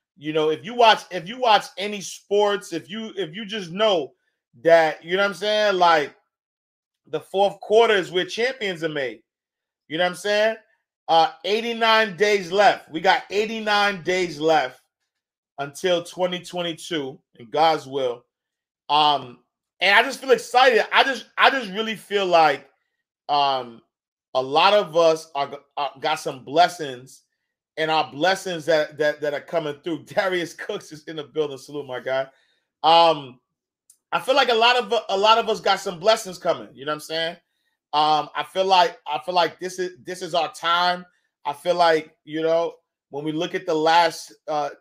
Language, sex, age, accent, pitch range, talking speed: English, male, 30-49, American, 155-200 Hz, 180 wpm